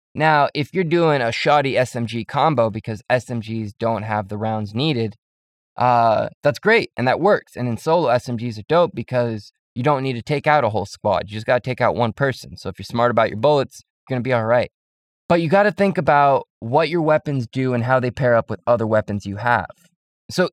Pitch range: 110-150 Hz